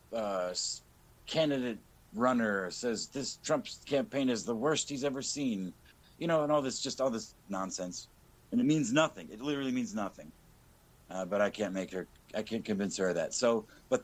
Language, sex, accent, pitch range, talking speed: English, male, American, 105-145 Hz, 190 wpm